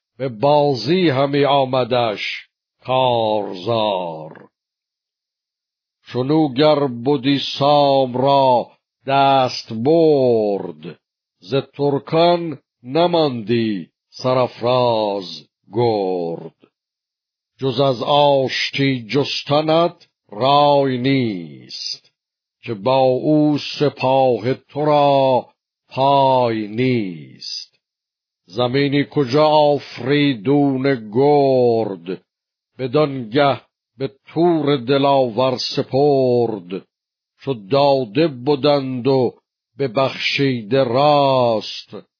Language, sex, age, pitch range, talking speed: Persian, male, 60-79, 120-145 Hz, 65 wpm